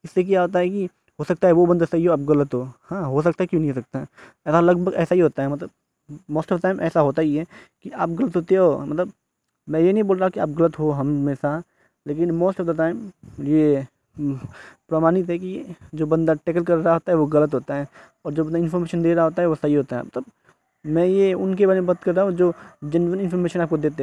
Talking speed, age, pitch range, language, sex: 255 wpm, 20-39, 150-180 Hz, Hindi, male